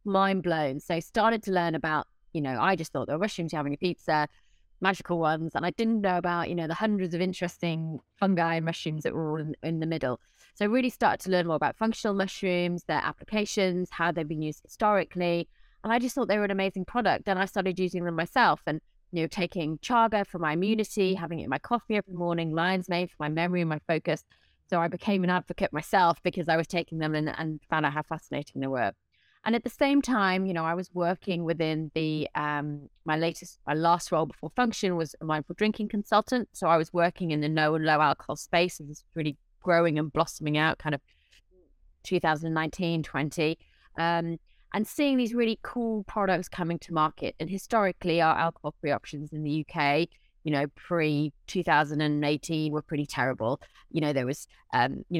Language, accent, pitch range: English, British, 155-185 Hz